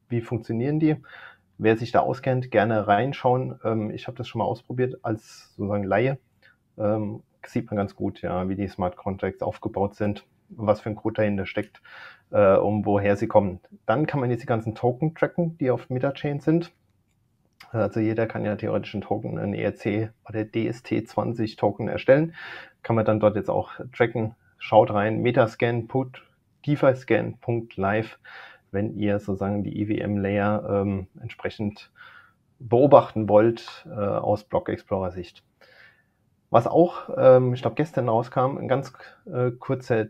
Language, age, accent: German, 30-49, German